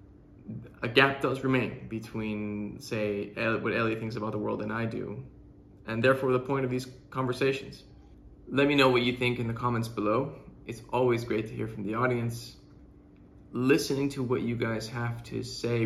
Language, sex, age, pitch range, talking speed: English, male, 20-39, 110-125 Hz, 180 wpm